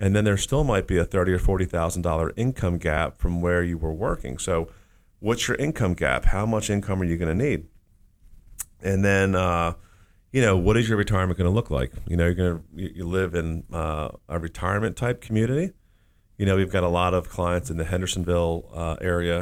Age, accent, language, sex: 40-59, American, English, male